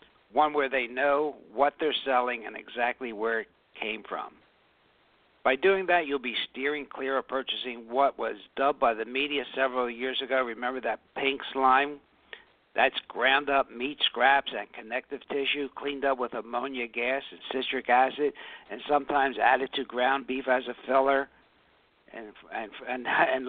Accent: American